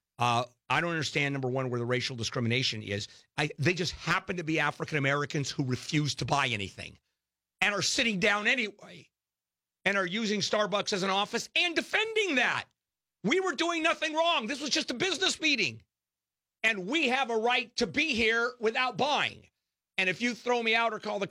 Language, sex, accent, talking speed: English, male, American, 190 wpm